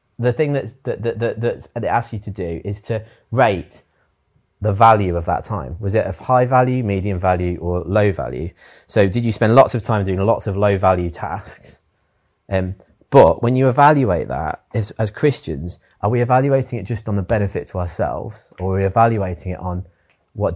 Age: 30-49